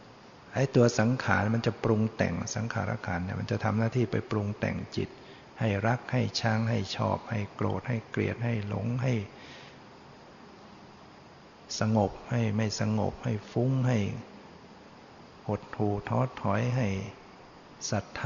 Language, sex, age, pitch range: Thai, male, 60-79, 105-120 Hz